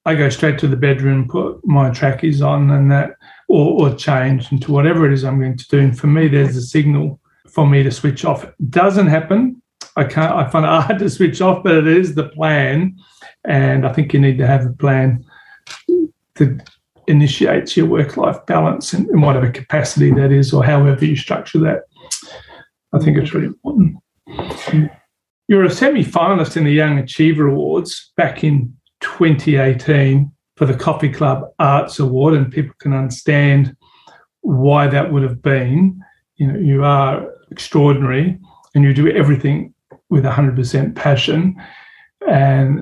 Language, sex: English, male